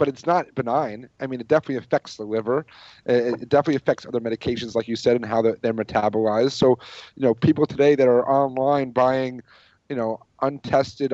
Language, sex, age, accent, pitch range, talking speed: English, male, 30-49, American, 115-135 Hz, 200 wpm